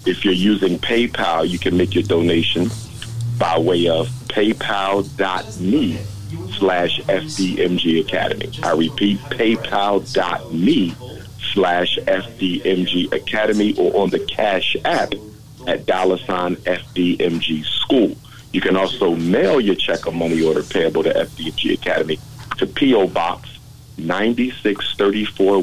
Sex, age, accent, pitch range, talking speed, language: male, 50-69, American, 85-100 Hz, 105 wpm, English